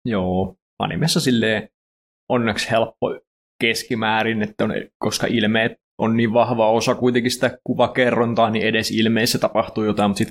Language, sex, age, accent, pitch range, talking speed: Finnish, male, 20-39, native, 110-120 Hz, 140 wpm